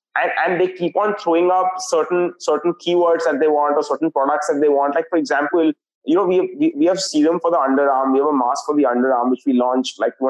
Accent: Indian